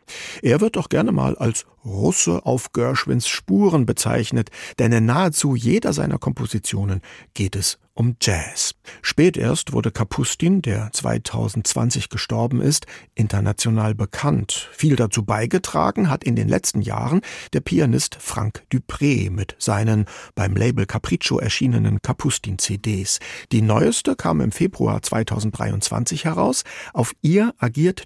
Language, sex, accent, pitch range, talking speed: German, male, German, 105-125 Hz, 130 wpm